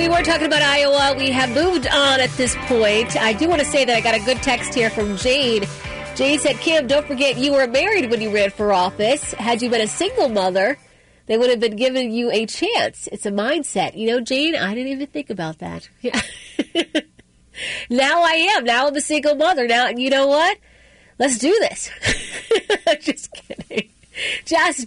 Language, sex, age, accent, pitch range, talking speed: English, female, 30-49, American, 225-295 Hz, 205 wpm